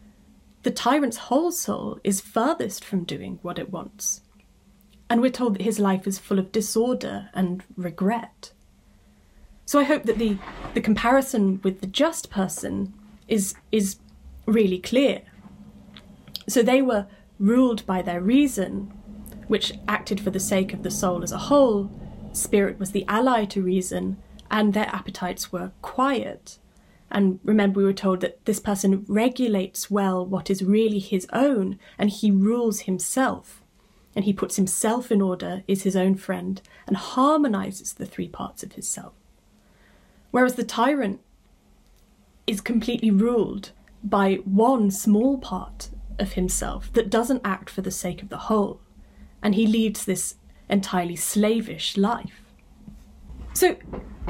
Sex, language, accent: female, English, British